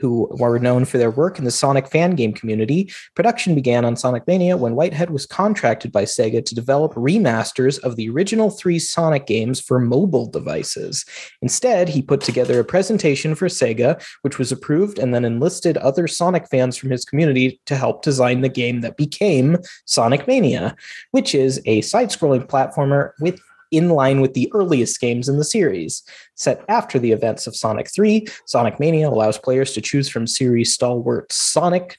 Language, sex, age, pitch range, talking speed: English, male, 30-49, 120-160 Hz, 180 wpm